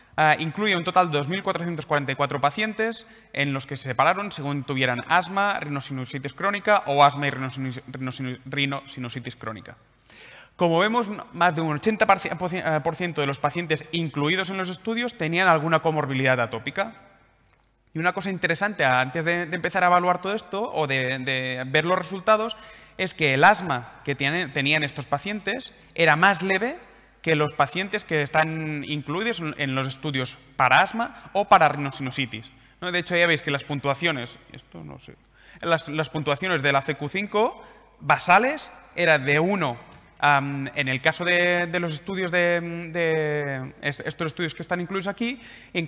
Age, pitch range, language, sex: 20-39, 140-185 Hz, Spanish, male